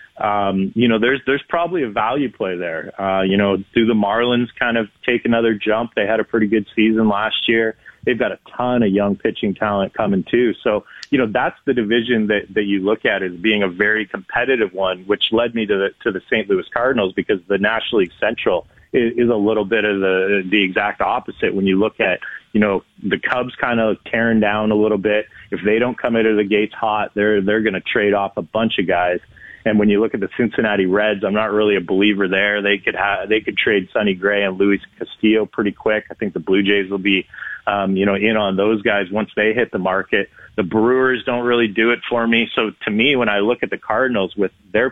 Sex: male